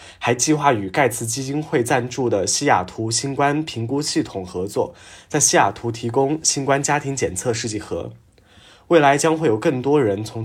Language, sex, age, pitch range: Chinese, male, 20-39, 110-140 Hz